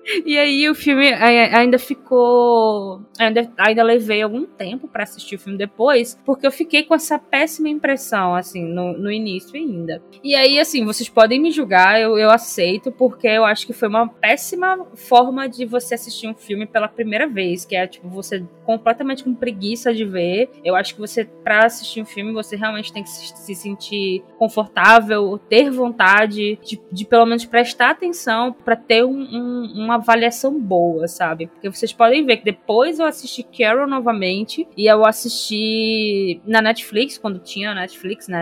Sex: female